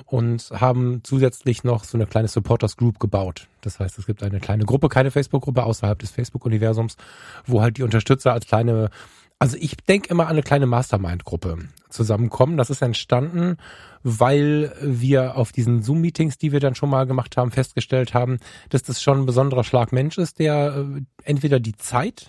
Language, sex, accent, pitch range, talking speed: German, male, German, 115-140 Hz, 170 wpm